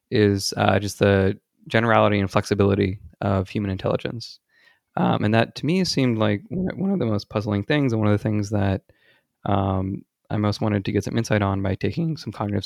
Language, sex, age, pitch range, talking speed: English, male, 20-39, 100-110 Hz, 200 wpm